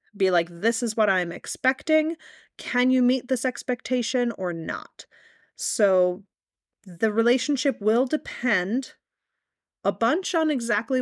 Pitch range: 190-245 Hz